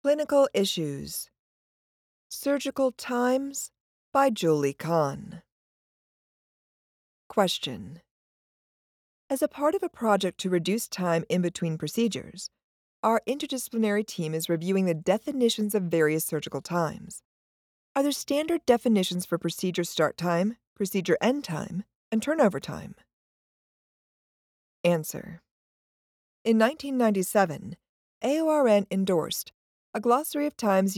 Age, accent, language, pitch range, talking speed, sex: 40-59, American, English, 170-245 Hz, 105 wpm, female